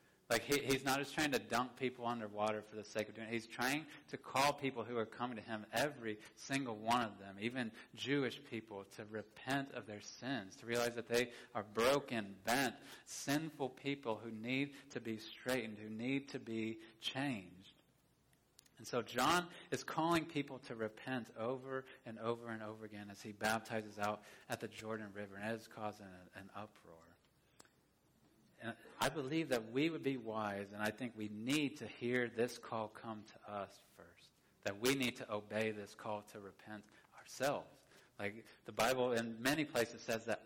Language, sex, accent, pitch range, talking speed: English, male, American, 105-125 Hz, 185 wpm